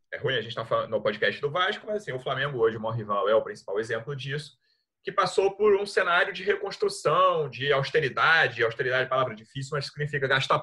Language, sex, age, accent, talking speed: Portuguese, male, 30-49, Brazilian, 225 wpm